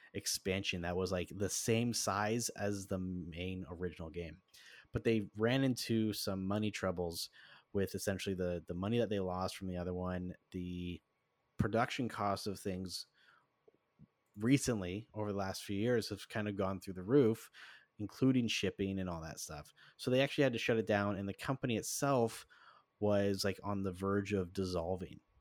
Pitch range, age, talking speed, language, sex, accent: 95-115 Hz, 30-49, 175 wpm, English, male, American